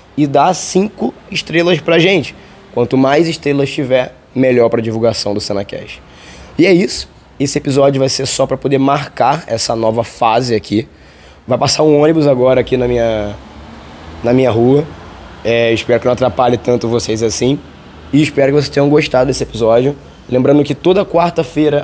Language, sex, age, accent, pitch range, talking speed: Portuguese, male, 20-39, Brazilian, 110-140 Hz, 165 wpm